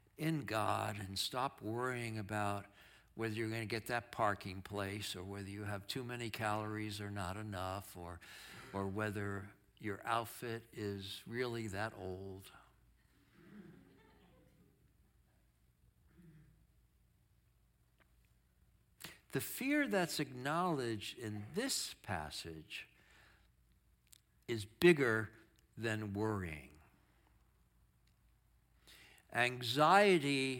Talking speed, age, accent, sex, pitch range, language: 90 wpm, 60-79, American, male, 100-160 Hz, English